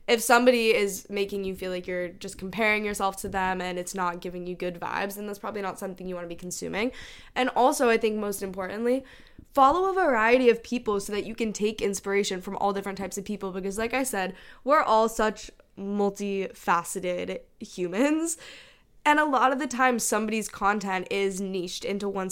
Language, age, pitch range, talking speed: English, 10-29, 185-230 Hz, 200 wpm